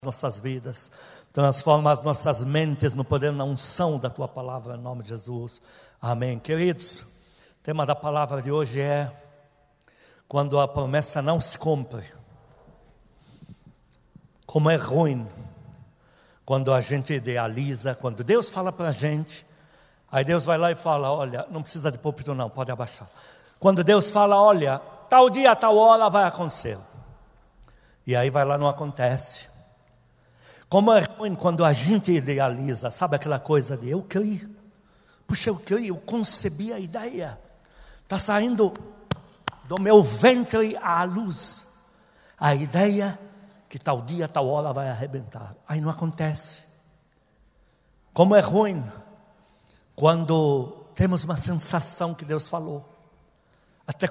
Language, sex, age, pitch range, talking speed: Portuguese, male, 60-79, 135-180 Hz, 140 wpm